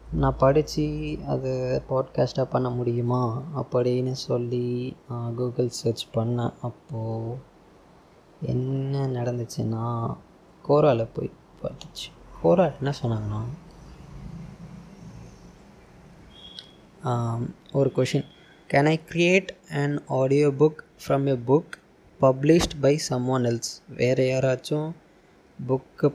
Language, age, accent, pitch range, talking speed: Tamil, 20-39, native, 125-145 Hz, 90 wpm